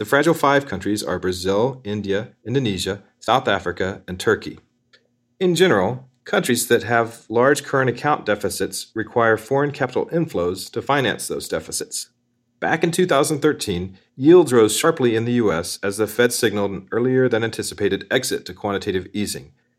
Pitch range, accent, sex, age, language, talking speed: 105-135 Hz, American, male, 40-59, English, 150 wpm